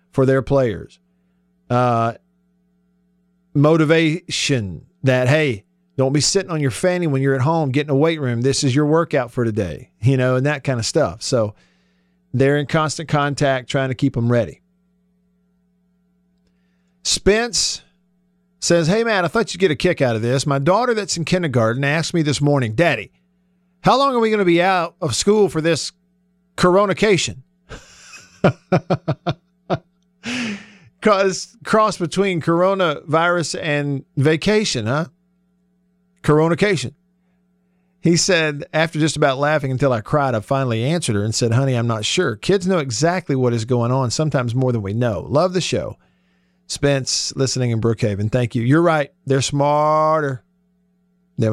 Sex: male